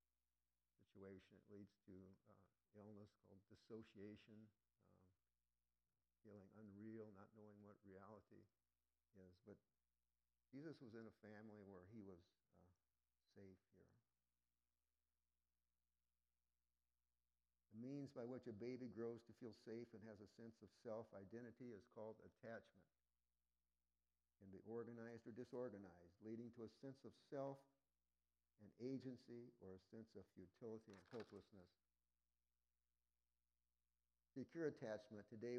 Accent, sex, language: American, male, English